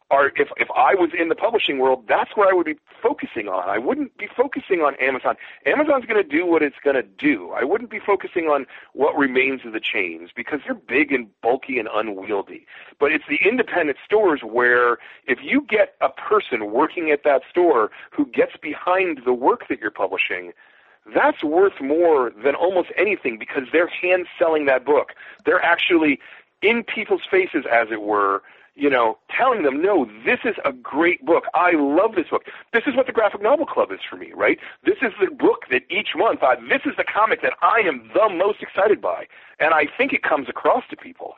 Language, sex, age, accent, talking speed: English, male, 40-59, American, 210 wpm